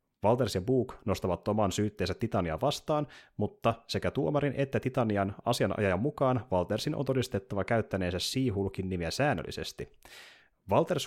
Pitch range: 95-130 Hz